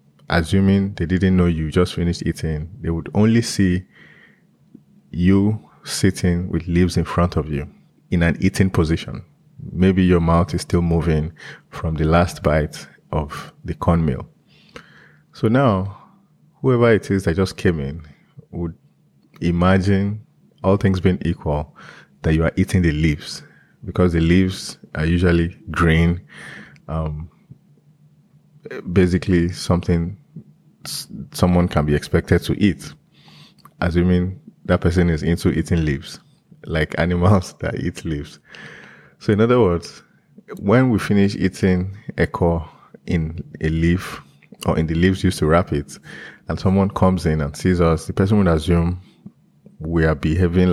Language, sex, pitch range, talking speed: English, male, 80-95 Hz, 140 wpm